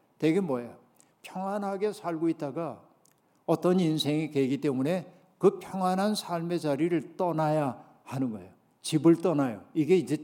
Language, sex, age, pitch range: Korean, male, 60-79, 145-175 Hz